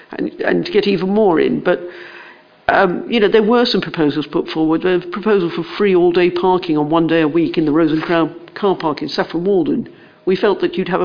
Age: 50-69